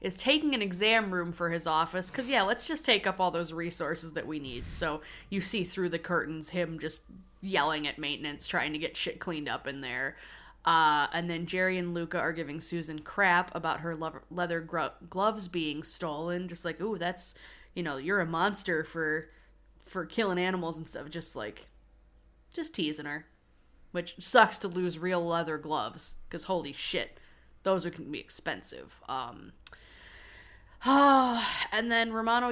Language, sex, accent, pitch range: English, female, American, 160-200 Hz